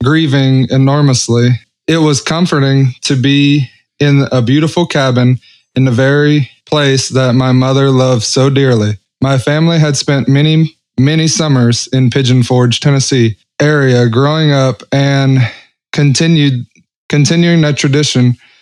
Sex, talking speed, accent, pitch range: male, 130 wpm, American, 125-145 Hz